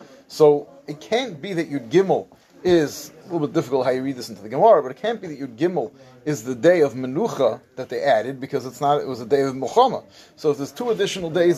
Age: 30-49